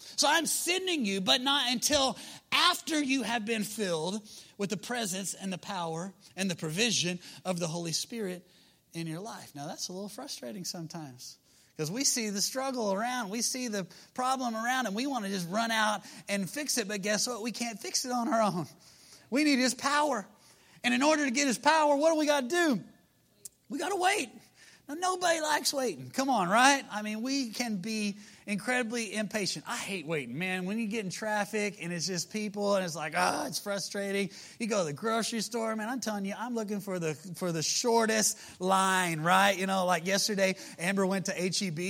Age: 30-49